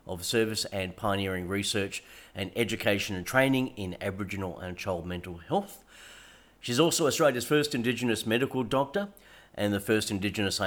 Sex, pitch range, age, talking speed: male, 100-125 Hz, 40-59, 145 wpm